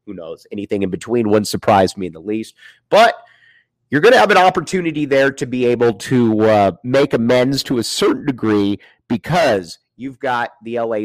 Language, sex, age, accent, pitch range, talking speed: English, male, 30-49, American, 115-155 Hz, 190 wpm